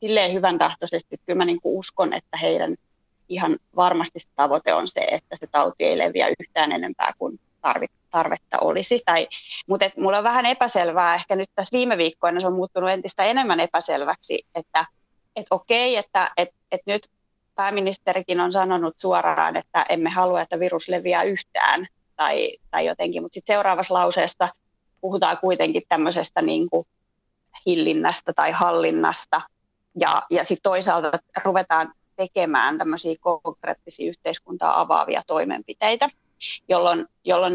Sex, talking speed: female, 130 wpm